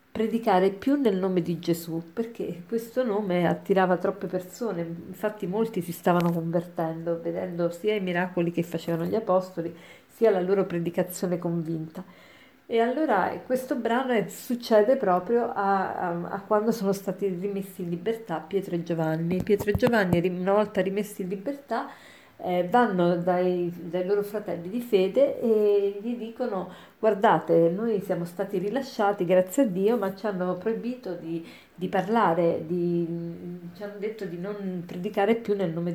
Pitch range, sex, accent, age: 175-220 Hz, female, native, 40-59